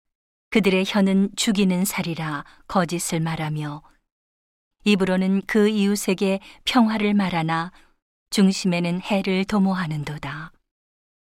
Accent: native